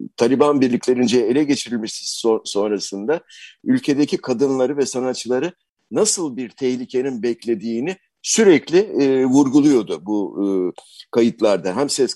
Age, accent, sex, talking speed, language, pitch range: 60-79, native, male, 110 wpm, Turkish, 115-185 Hz